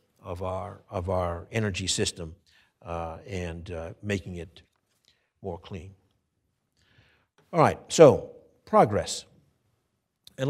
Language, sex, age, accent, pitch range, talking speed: English, male, 60-79, American, 95-130 Hz, 105 wpm